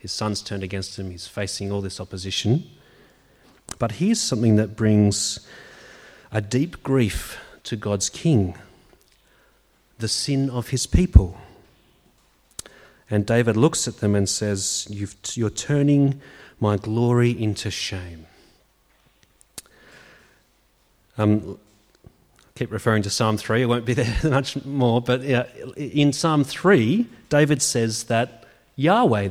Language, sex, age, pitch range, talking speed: English, male, 30-49, 105-140 Hz, 130 wpm